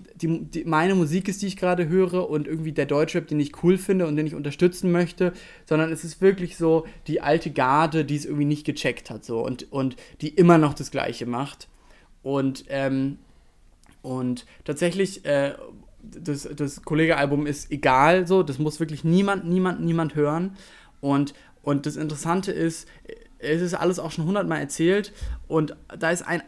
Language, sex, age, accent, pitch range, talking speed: German, male, 20-39, German, 145-185 Hz, 180 wpm